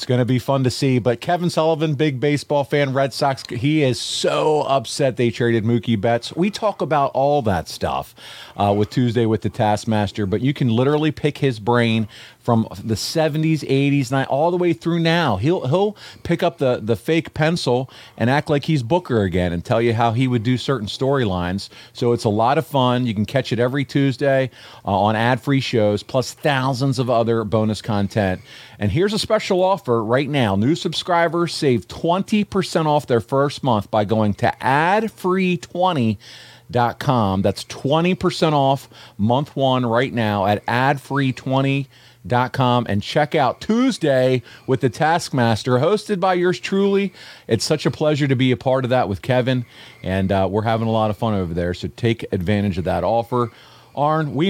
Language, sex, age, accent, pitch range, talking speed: English, male, 40-59, American, 115-155 Hz, 185 wpm